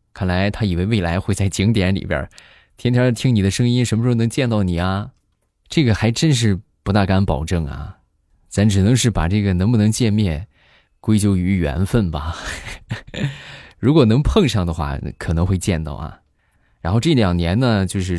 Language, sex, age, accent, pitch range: Chinese, male, 20-39, native, 85-110 Hz